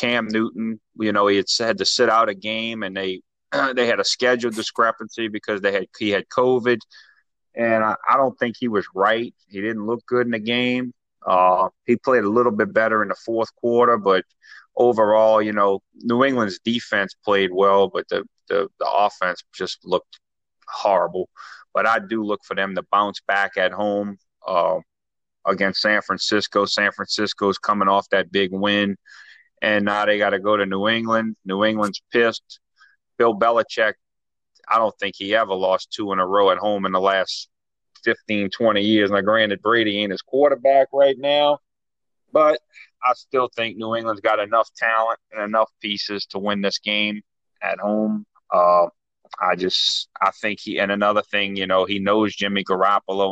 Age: 30-49